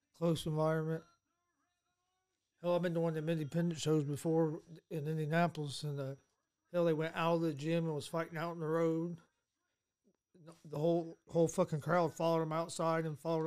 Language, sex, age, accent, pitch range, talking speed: English, male, 40-59, American, 150-165 Hz, 180 wpm